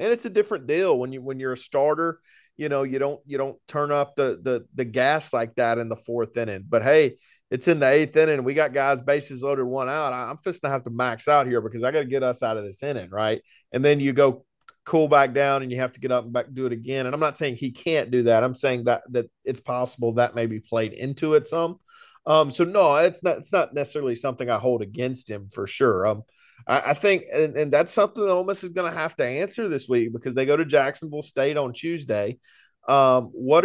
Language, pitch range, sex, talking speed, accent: English, 125-155 Hz, male, 260 wpm, American